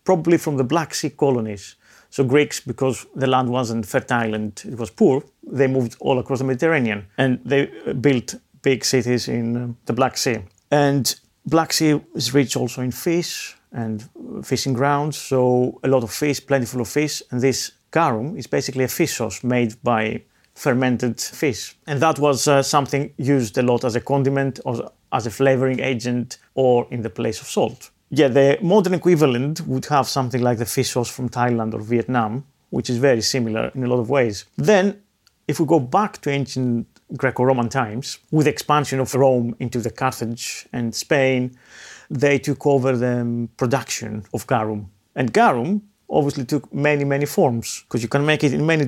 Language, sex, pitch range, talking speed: English, male, 120-145 Hz, 180 wpm